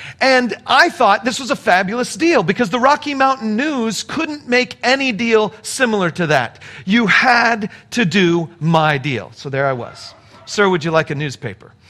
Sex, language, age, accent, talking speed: male, English, 40-59, American, 180 wpm